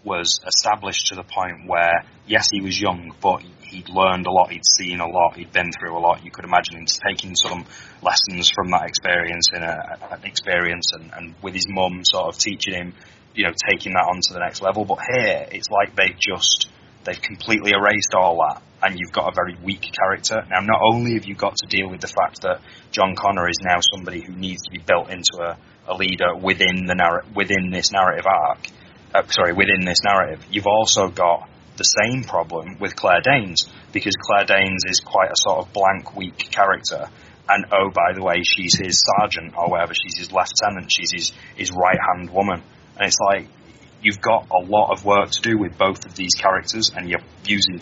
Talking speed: 210 wpm